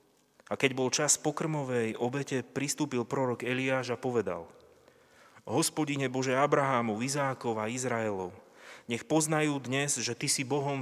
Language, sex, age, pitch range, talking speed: Slovak, male, 30-49, 115-135 Hz, 135 wpm